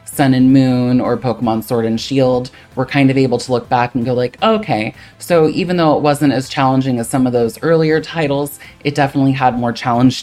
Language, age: English, 20-39